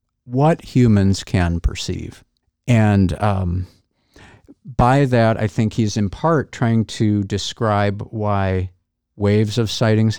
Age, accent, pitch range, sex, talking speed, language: 50-69, American, 95-115 Hz, male, 120 wpm, English